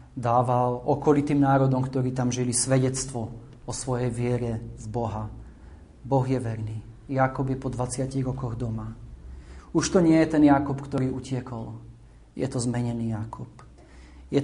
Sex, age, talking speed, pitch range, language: male, 40-59, 140 wpm, 120-145 Hz, Slovak